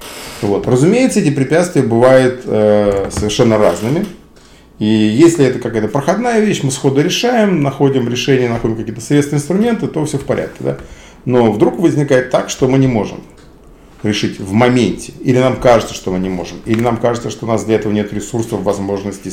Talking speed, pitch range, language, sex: 170 wpm, 105-145 Hz, Russian, male